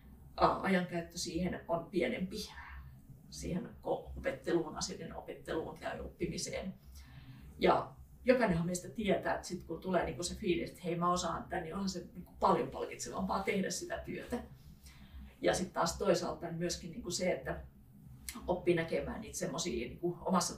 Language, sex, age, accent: Finnish, female, 30-49, native